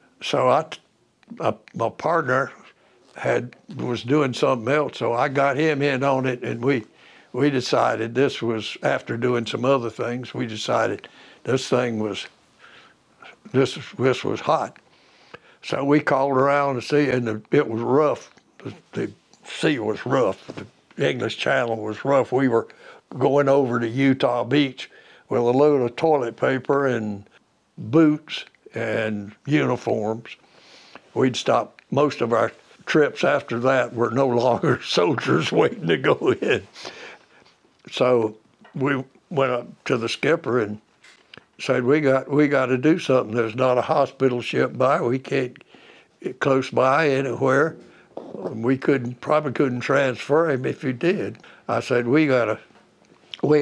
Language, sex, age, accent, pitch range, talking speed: English, male, 60-79, American, 120-140 Hz, 150 wpm